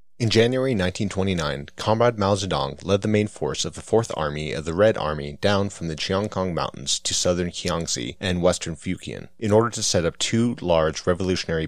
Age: 30-49